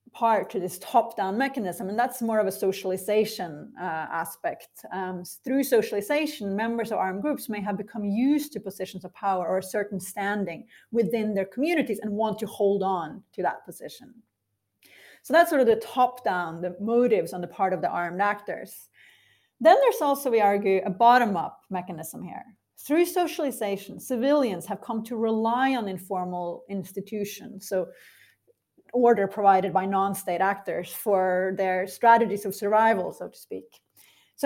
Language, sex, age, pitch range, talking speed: English, female, 30-49, 190-240 Hz, 160 wpm